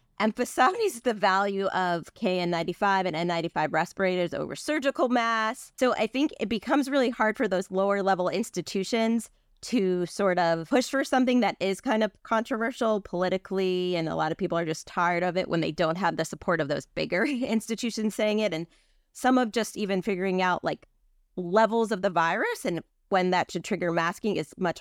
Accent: American